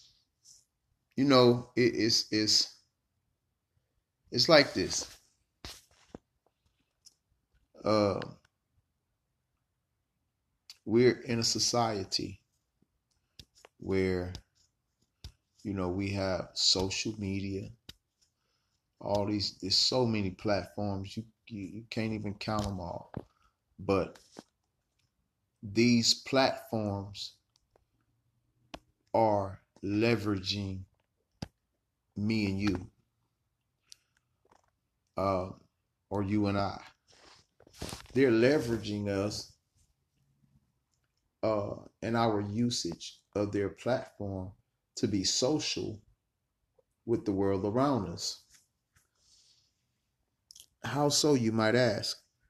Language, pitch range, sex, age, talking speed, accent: English, 100-115 Hz, male, 30-49, 80 wpm, American